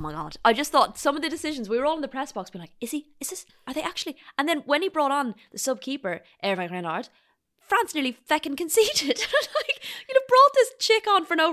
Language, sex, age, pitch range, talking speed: English, female, 20-39, 185-265 Hz, 255 wpm